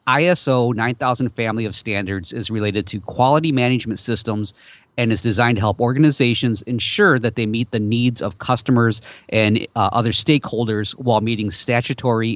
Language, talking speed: English, 155 wpm